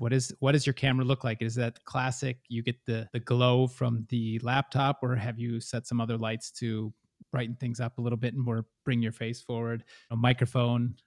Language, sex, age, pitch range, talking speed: English, male, 30-49, 115-130 Hz, 220 wpm